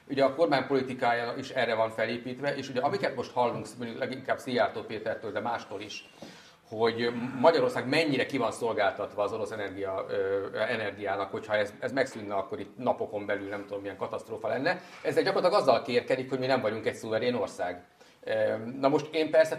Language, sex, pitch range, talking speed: Hungarian, male, 110-155 Hz, 170 wpm